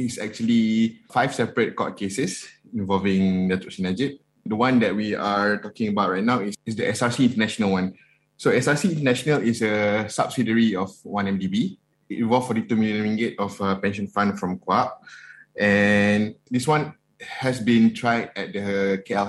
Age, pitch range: 20-39, 100-120 Hz